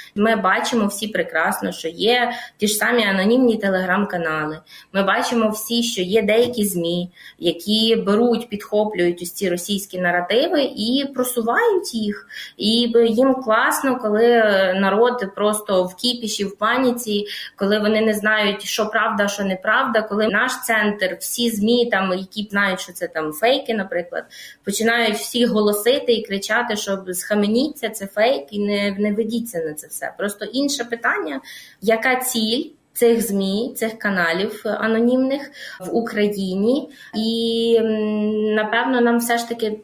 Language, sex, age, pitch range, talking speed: Ukrainian, female, 20-39, 195-235 Hz, 140 wpm